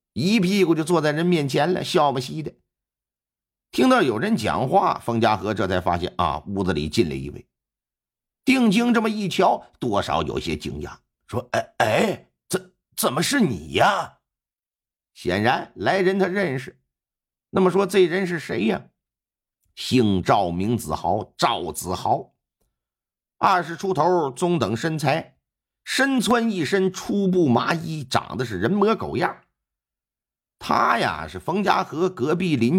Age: 50-69